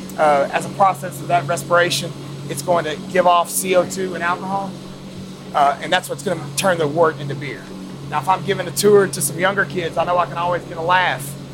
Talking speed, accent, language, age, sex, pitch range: 225 wpm, American, English, 30-49, male, 160-195 Hz